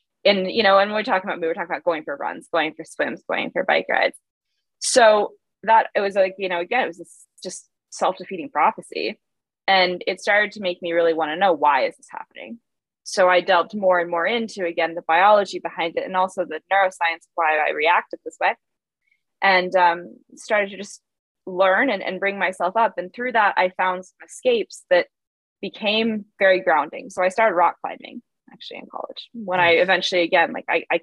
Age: 20-39